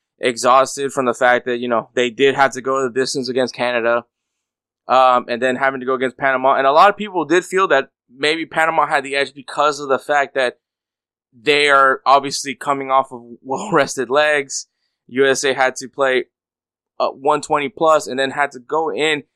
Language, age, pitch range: English, 20-39, 125-150 Hz